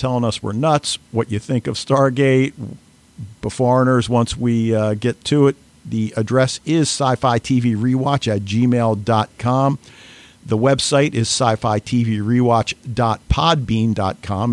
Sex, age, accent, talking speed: male, 50-69, American, 130 wpm